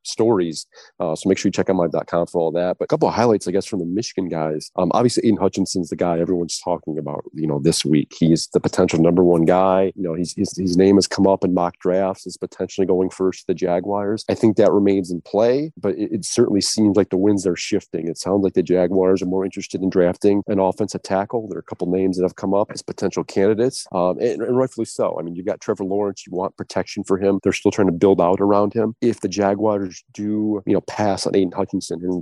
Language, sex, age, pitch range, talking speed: English, male, 30-49, 90-100 Hz, 255 wpm